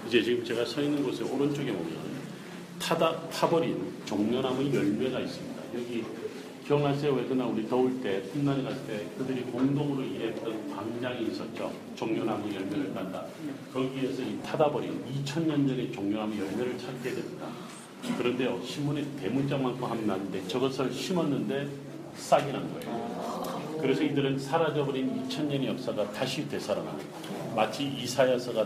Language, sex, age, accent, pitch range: Korean, male, 40-59, native, 115-140 Hz